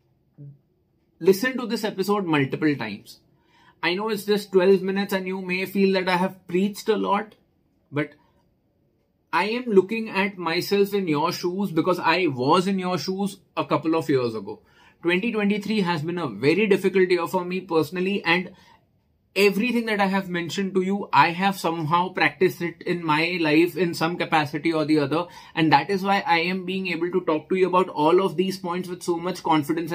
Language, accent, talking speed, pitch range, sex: English, Indian, 190 wpm, 160-190 Hz, male